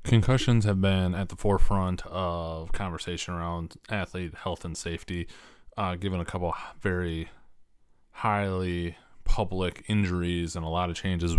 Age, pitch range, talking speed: 20-39, 85-95 Hz, 140 wpm